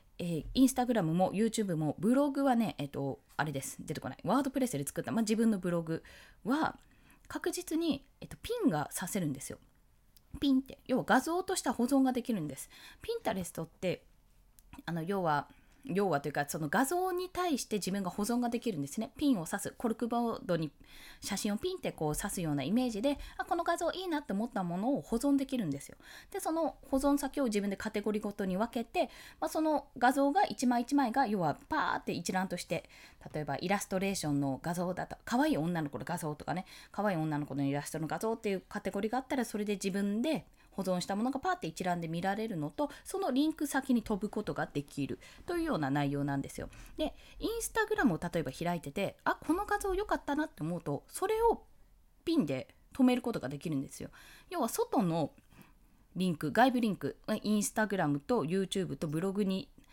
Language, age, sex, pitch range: Japanese, 20-39, female, 165-270 Hz